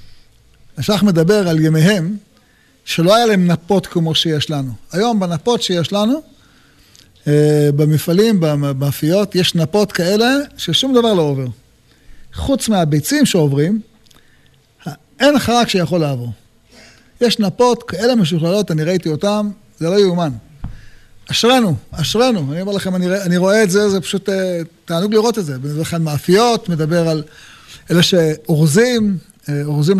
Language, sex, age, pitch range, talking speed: Hebrew, male, 40-59, 155-230 Hz, 125 wpm